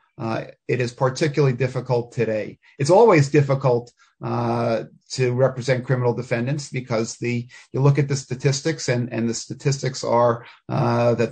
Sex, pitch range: male, 120-150 Hz